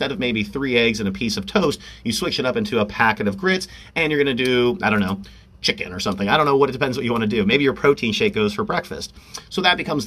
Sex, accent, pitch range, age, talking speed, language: male, American, 105-155 Hz, 30-49, 300 wpm, English